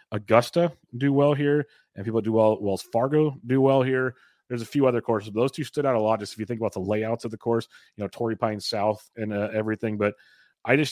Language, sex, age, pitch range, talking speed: English, male, 30-49, 105-125 Hz, 255 wpm